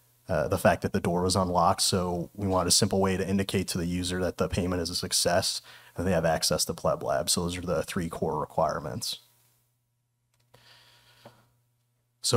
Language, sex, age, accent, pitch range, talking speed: English, male, 30-49, American, 90-110 Hz, 195 wpm